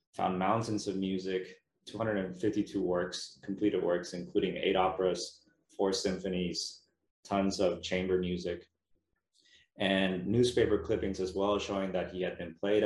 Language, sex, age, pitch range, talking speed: English, male, 20-39, 90-100 Hz, 130 wpm